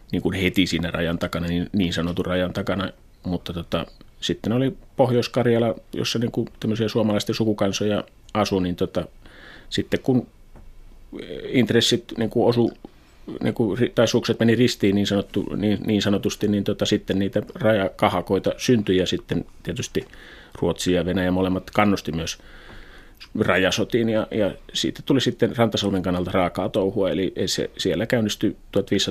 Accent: native